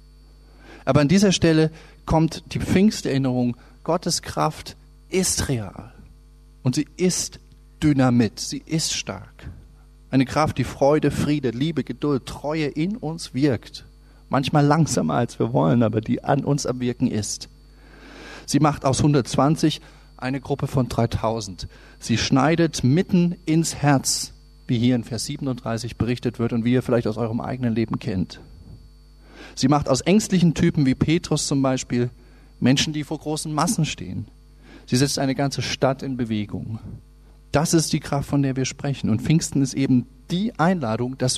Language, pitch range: German, 125-155 Hz